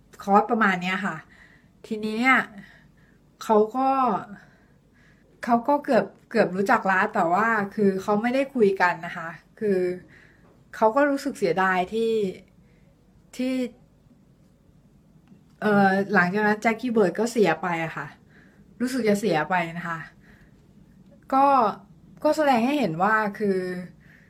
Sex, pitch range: female, 180-235 Hz